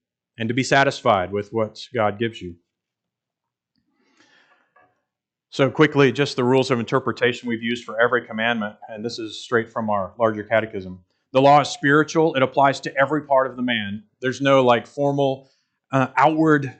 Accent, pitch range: American, 110-140 Hz